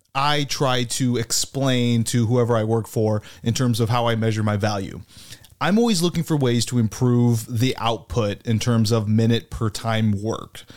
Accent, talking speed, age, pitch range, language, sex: American, 185 wpm, 30-49, 110-130 Hz, English, male